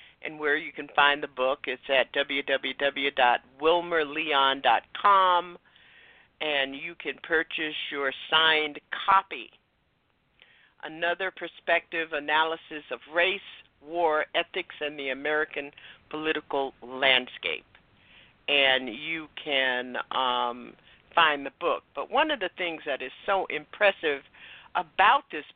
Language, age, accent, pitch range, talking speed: English, 50-69, American, 140-170 Hz, 110 wpm